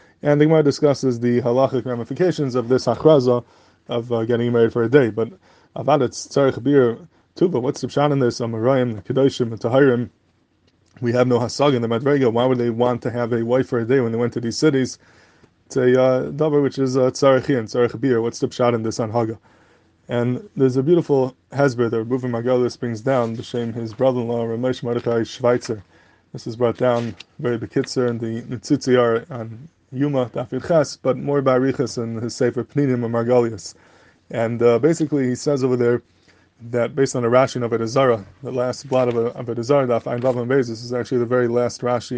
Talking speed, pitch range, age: 190 wpm, 120-140 Hz, 20-39